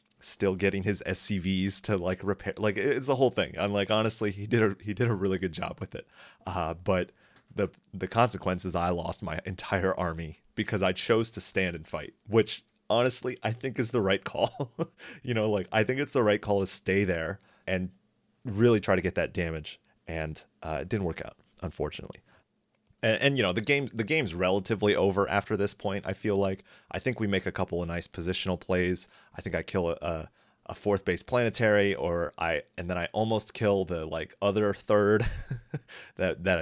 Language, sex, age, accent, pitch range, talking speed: English, male, 30-49, American, 90-110 Hz, 205 wpm